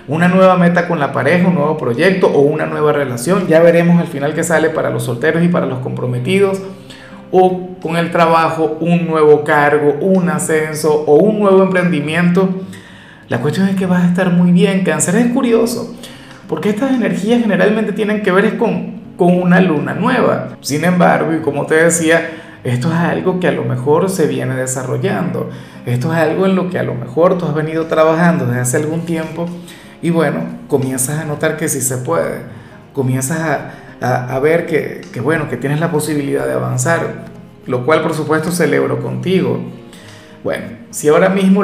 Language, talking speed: Spanish, 185 wpm